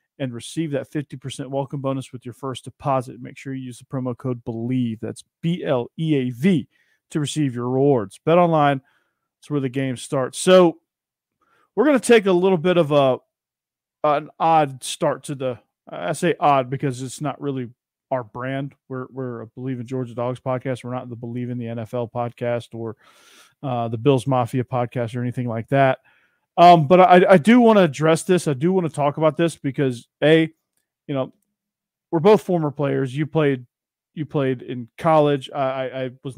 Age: 40-59